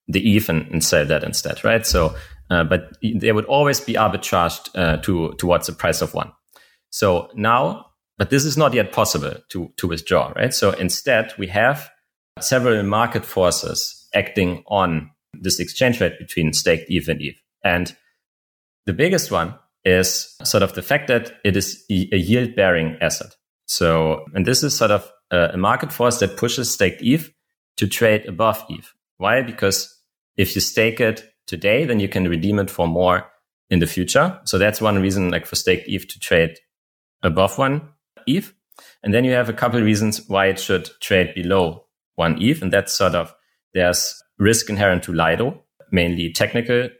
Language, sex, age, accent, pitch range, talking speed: English, male, 30-49, German, 85-110 Hz, 175 wpm